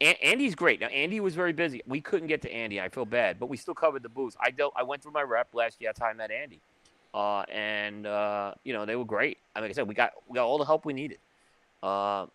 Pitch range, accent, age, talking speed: 105-155 Hz, American, 30-49, 265 wpm